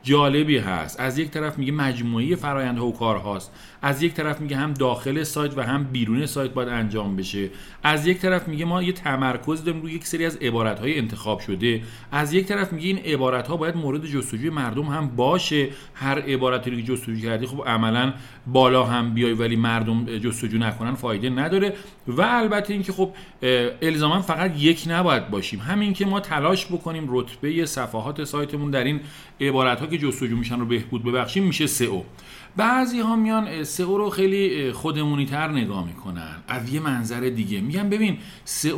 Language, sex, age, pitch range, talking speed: Persian, male, 40-59, 120-160 Hz, 180 wpm